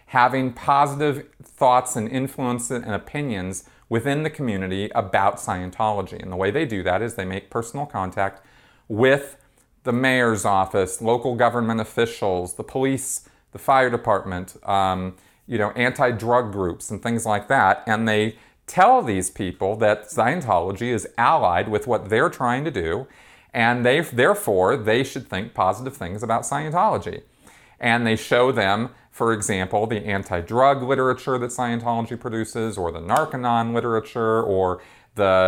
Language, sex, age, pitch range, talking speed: English, male, 40-59, 100-125 Hz, 145 wpm